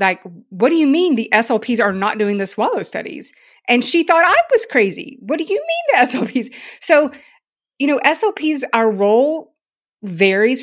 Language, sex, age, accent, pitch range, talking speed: English, female, 30-49, American, 195-250 Hz, 180 wpm